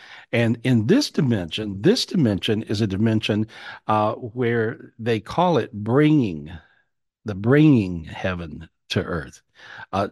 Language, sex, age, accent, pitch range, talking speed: English, male, 50-69, American, 105-140 Hz, 125 wpm